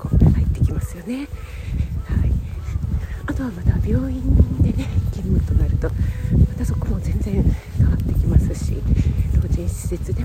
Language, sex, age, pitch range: Japanese, female, 50-69, 85-100 Hz